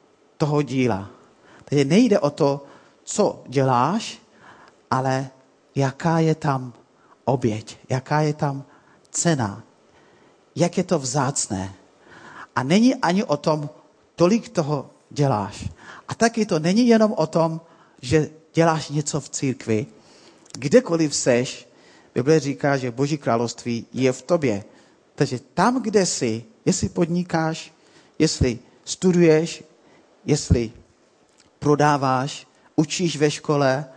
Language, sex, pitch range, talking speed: Czech, male, 130-165 Hz, 115 wpm